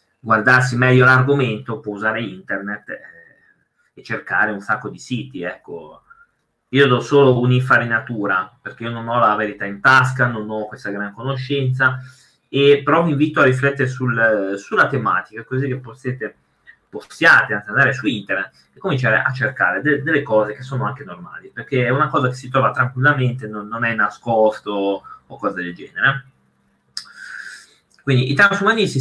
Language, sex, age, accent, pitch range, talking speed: Italian, male, 30-49, native, 120-145 Hz, 155 wpm